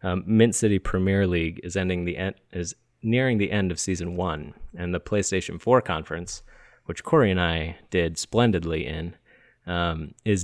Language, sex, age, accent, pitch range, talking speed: English, male, 30-49, American, 85-100 Hz, 170 wpm